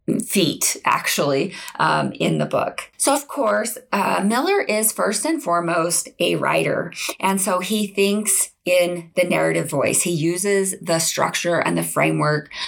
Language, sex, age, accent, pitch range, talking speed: English, female, 20-39, American, 165-205 Hz, 150 wpm